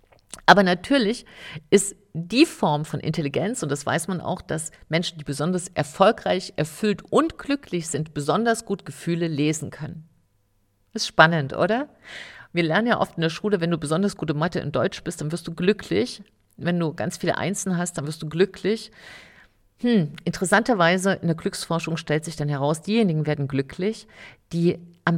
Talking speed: 175 wpm